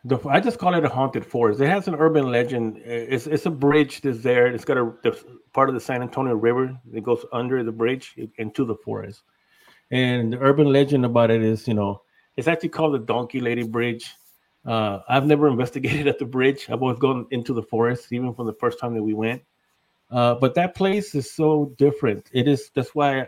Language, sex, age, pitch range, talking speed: English, male, 30-49, 115-140 Hz, 220 wpm